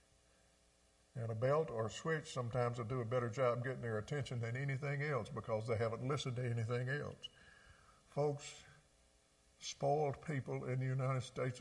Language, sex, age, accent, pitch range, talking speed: English, male, 50-69, American, 120-155 Hz, 165 wpm